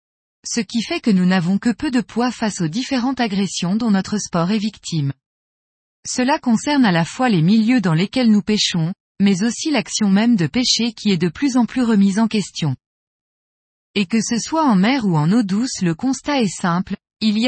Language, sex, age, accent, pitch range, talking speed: French, female, 20-39, French, 190-245 Hz, 210 wpm